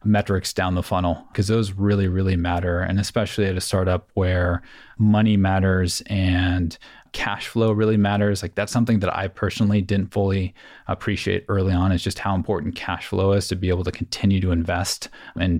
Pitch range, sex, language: 90-105 Hz, male, English